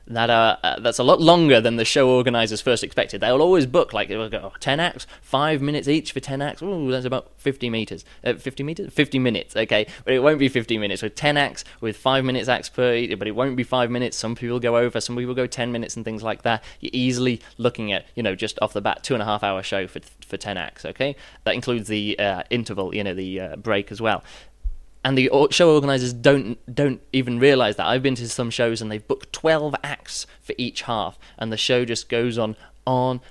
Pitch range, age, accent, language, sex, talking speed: 110-140 Hz, 20-39, British, English, male, 240 wpm